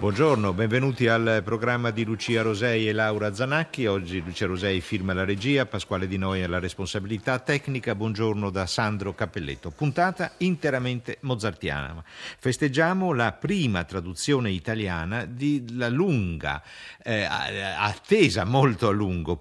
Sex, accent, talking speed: male, native, 125 wpm